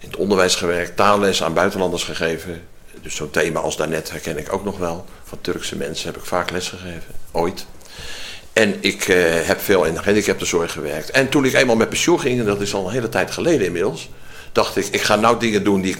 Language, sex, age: Dutch, male, 60-79